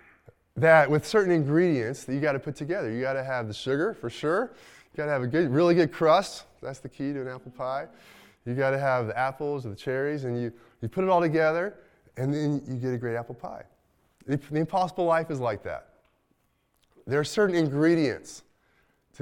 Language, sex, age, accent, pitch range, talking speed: English, male, 20-39, American, 120-160 Hz, 220 wpm